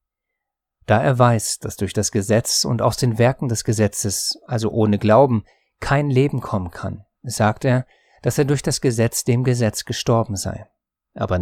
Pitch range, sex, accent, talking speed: 105-130 Hz, male, German, 170 wpm